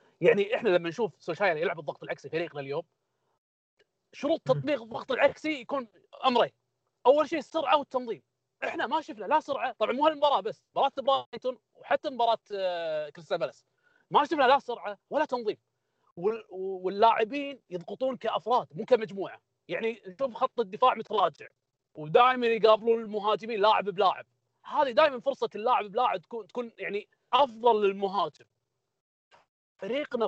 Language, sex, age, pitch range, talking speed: Arabic, male, 30-49, 195-280 Hz, 135 wpm